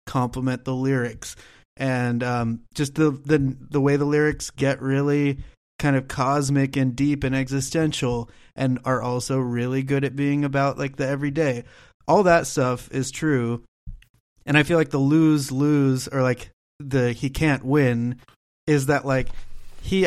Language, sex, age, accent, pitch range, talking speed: English, male, 30-49, American, 120-145 Hz, 160 wpm